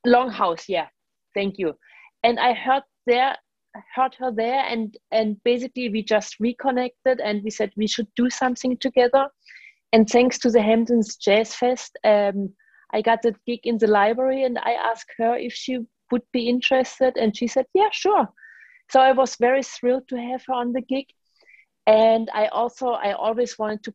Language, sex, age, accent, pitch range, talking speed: English, female, 30-49, German, 195-245 Hz, 180 wpm